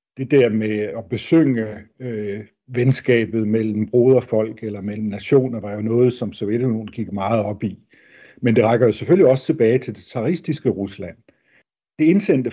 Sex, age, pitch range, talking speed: male, 60-79, 110-135 Hz, 165 wpm